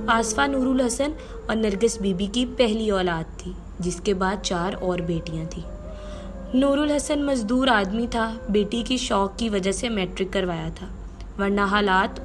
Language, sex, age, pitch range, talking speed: Urdu, female, 20-39, 180-220 Hz, 165 wpm